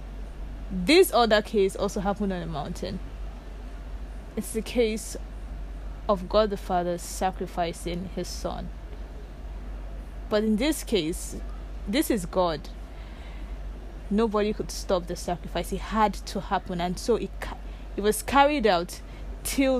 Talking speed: 125 wpm